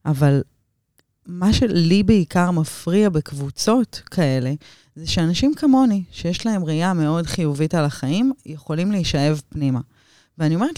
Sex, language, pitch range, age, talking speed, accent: female, Hebrew, 135-180 Hz, 30-49, 120 wpm, native